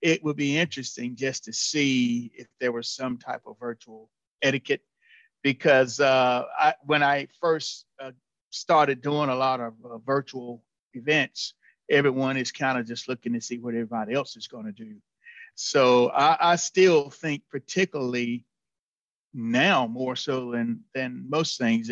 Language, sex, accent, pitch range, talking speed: English, male, American, 120-140 Hz, 155 wpm